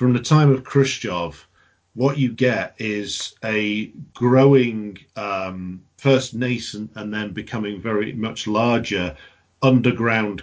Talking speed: 120 wpm